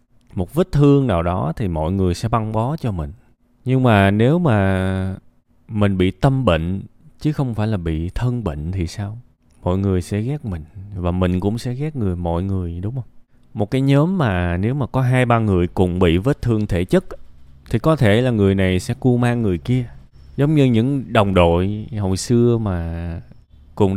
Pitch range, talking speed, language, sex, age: 90-120 Hz, 205 wpm, Vietnamese, male, 20-39